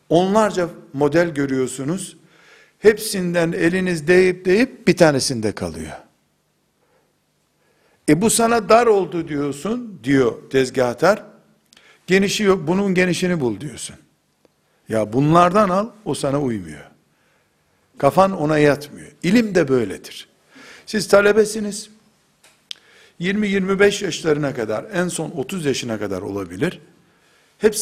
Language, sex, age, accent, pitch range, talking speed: Turkish, male, 60-79, native, 140-190 Hz, 105 wpm